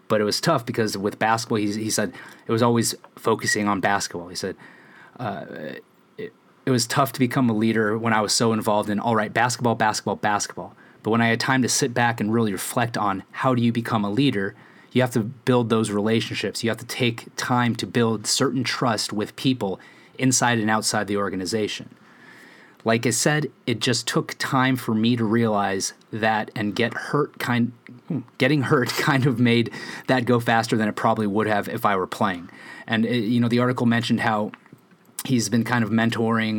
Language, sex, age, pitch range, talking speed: English, male, 30-49, 105-125 Hz, 205 wpm